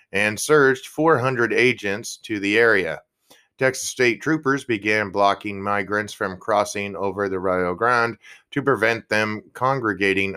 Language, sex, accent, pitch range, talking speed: English, male, American, 100-120 Hz, 135 wpm